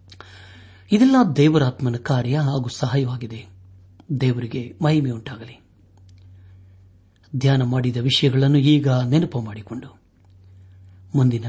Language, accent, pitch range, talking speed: Kannada, native, 95-140 Hz, 80 wpm